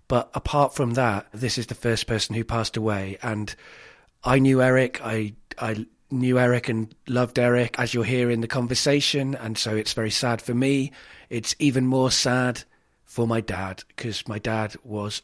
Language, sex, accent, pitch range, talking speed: English, male, British, 115-140 Hz, 185 wpm